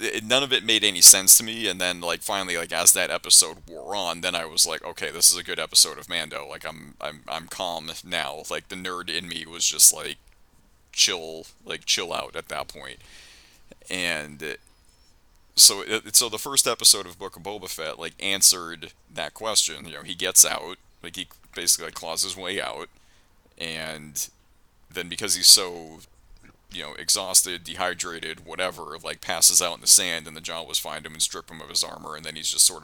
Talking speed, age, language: 205 wpm, 30-49, English